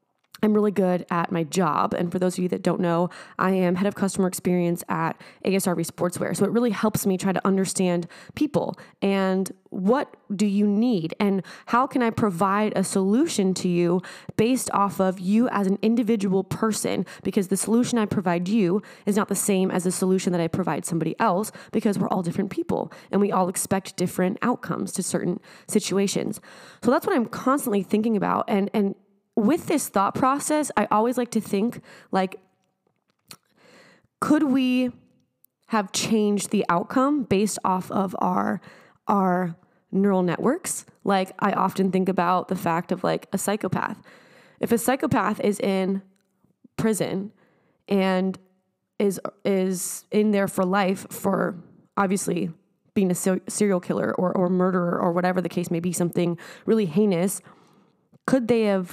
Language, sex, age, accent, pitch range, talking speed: English, female, 20-39, American, 185-210 Hz, 165 wpm